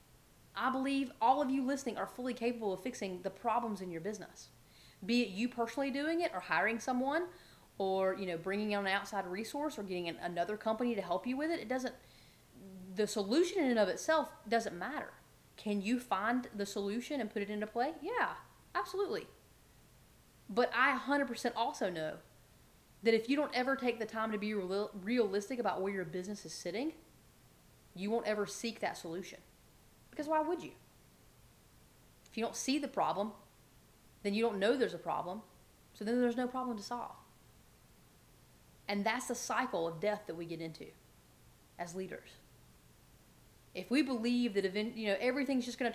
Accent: American